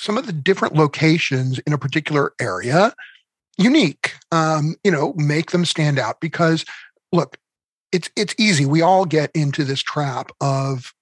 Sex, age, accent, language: male, 40-59, American, English